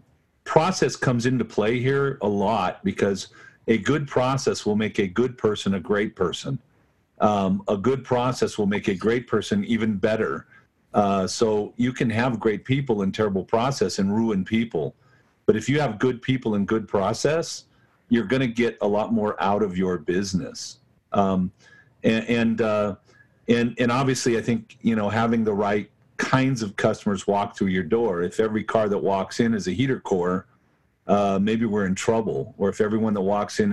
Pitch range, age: 105-125 Hz, 50-69